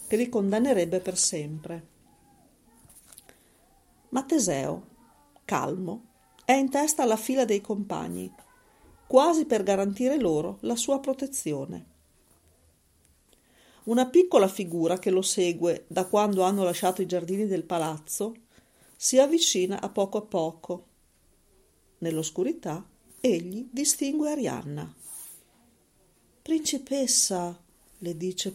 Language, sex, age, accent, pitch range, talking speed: Italian, female, 40-59, native, 165-245 Hz, 105 wpm